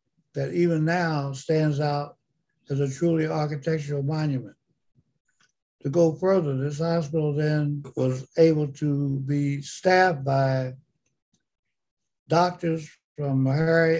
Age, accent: 60-79, American